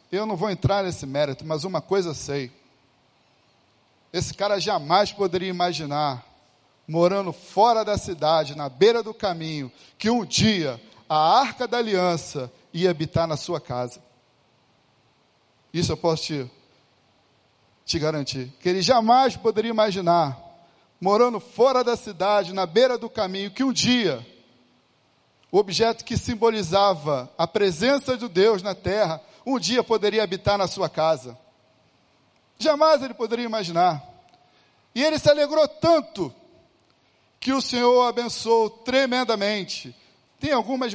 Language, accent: Portuguese, Brazilian